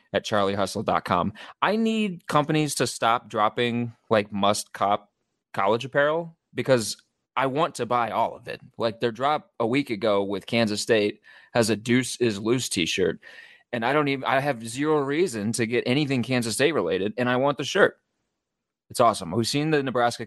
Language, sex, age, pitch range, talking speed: English, male, 20-39, 100-125 Hz, 185 wpm